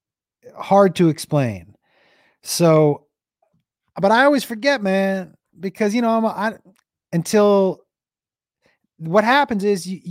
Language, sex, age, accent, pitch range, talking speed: English, male, 30-49, American, 130-175 Hz, 120 wpm